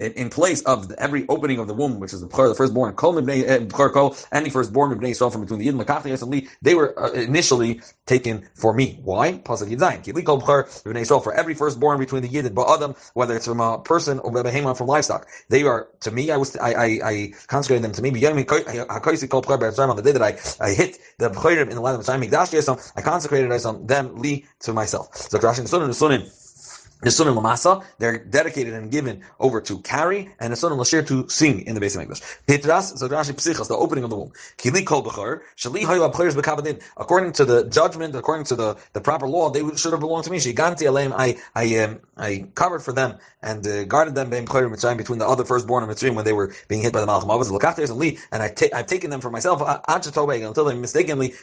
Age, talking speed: 30-49, 195 wpm